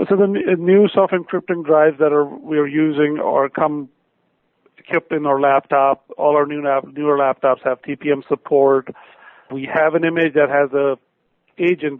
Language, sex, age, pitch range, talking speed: English, male, 40-59, 135-155 Hz, 160 wpm